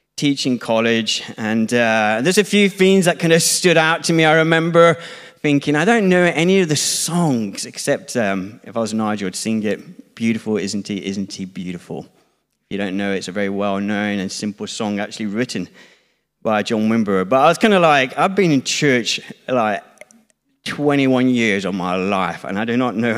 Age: 20-39